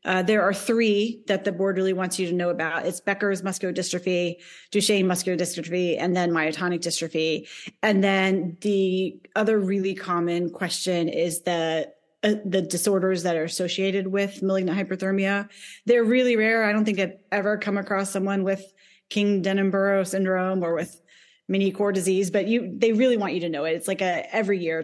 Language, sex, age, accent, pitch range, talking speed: English, female, 30-49, American, 175-200 Hz, 185 wpm